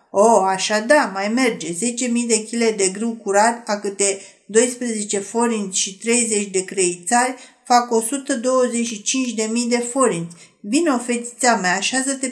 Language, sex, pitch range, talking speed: Romanian, female, 220-275 Hz, 145 wpm